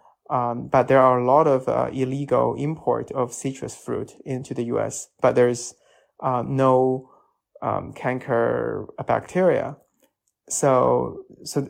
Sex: male